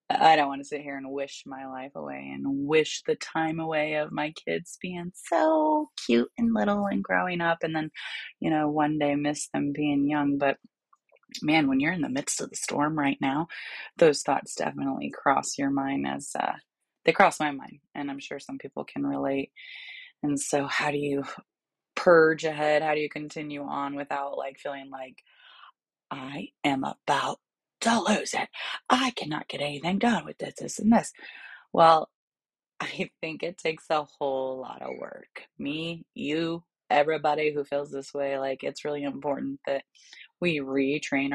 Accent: American